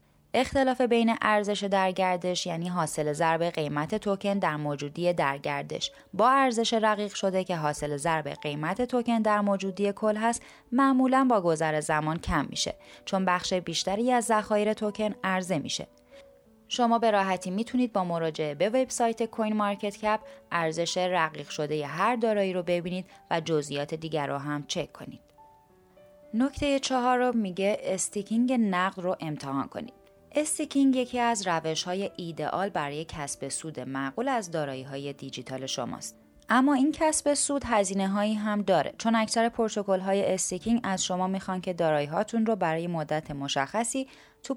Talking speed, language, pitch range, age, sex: 145 wpm, Persian, 160-230 Hz, 20-39, female